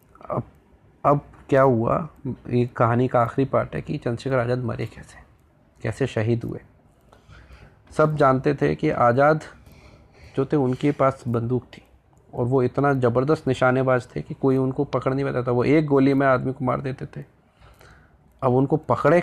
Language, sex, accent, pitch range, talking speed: Hindi, male, native, 120-140 Hz, 160 wpm